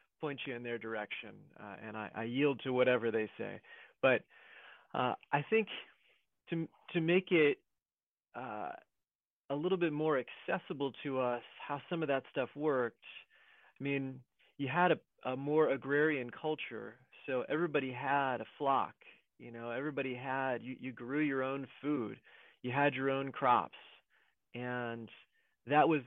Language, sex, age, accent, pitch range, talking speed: English, male, 30-49, American, 120-145 Hz, 155 wpm